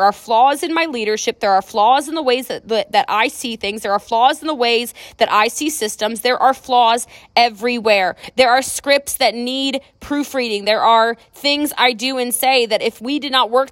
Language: English